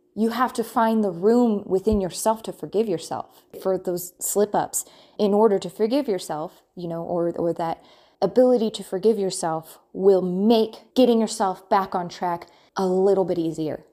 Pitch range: 175-205 Hz